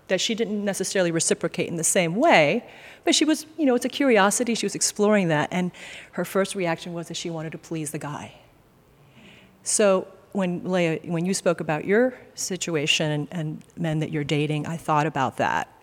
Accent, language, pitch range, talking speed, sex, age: American, English, 155-200 Hz, 195 wpm, female, 40-59